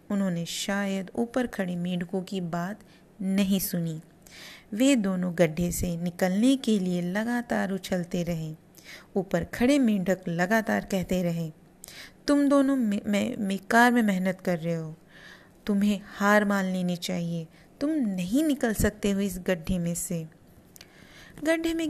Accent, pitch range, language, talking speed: native, 180-230 Hz, Hindi, 150 wpm